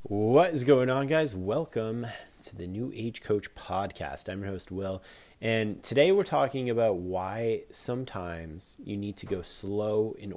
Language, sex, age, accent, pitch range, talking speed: English, male, 30-49, American, 100-120 Hz, 170 wpm